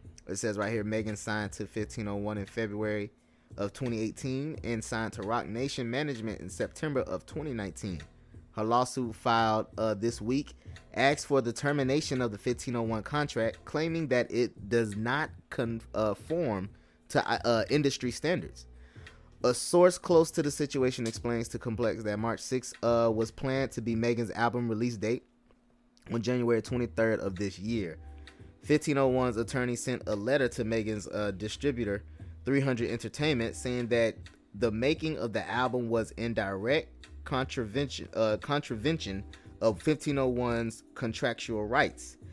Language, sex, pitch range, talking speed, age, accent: English, male, 105-130 Hz, 140 wpm, 20-39, American